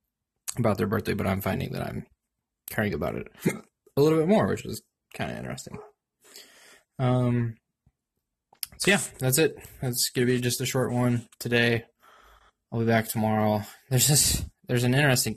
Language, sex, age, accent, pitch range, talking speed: English, male, 20-39, American, 105-130 Hz, 170 wpm